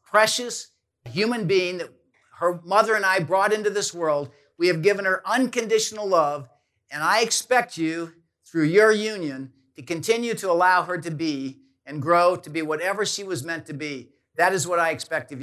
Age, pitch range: 50-69, 150-200 Hz